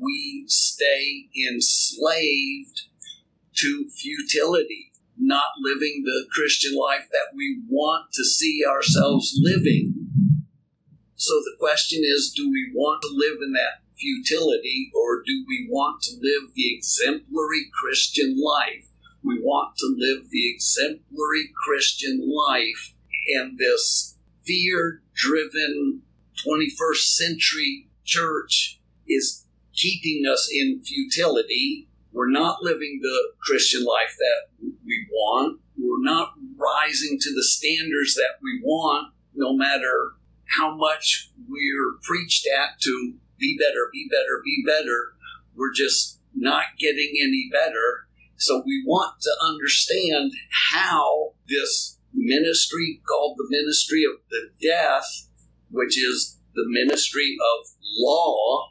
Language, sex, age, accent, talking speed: English, male, 50-69, American, 120 wpm